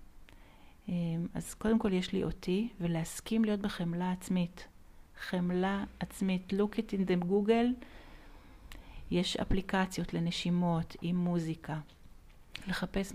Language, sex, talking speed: Hebrew, female, 105 wpm